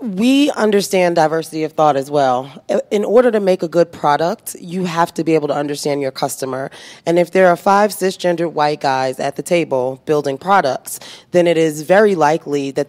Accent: American